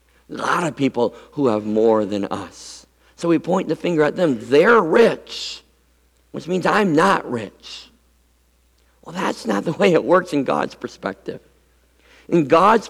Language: English